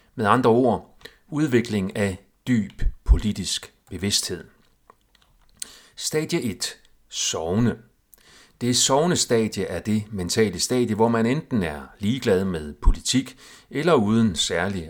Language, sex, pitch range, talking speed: Danish, male, 95-120 Hz, 115 wpm